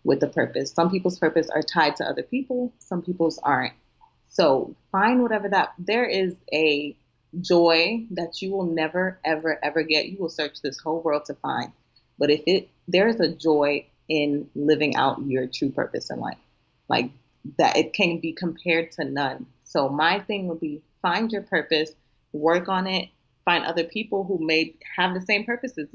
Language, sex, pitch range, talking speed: English, female, 150-190 Hz, 185 wpm